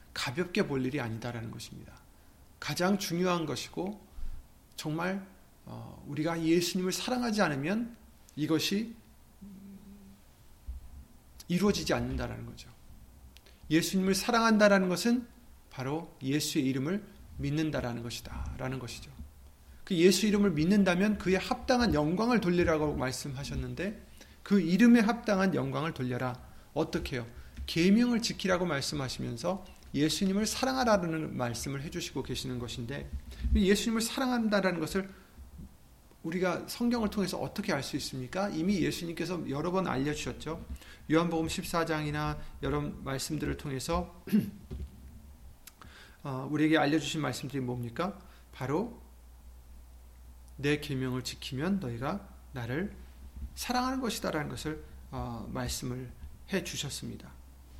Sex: male